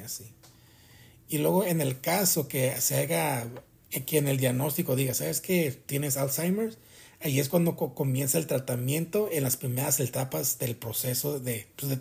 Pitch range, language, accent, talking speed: 120-155 Hz, Spanish, Mexican, 165 wpm